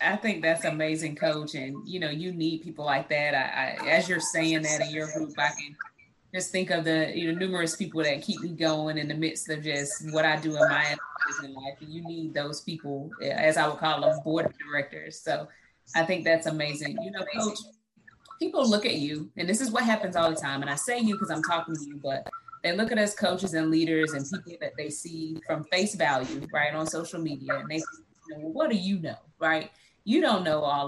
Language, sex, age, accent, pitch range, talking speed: English, female, 20-39, American, 155-215 Hz, 235 wpm